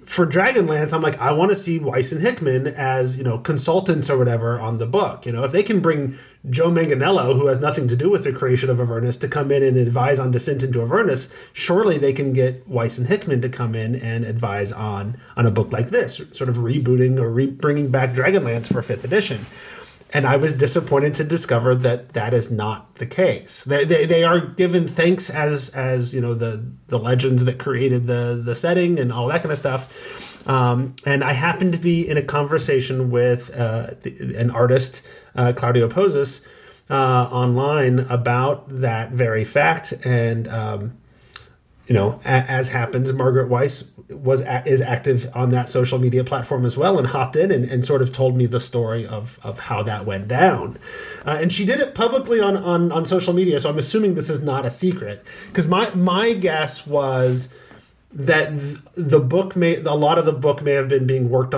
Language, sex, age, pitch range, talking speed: English, male, 30-49, 120-150 Hz, 200 wpm